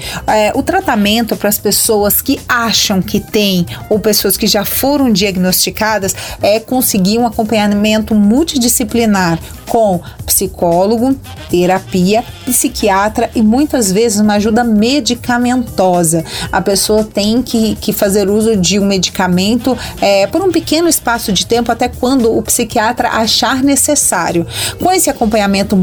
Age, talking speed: 30-49, 135 wpm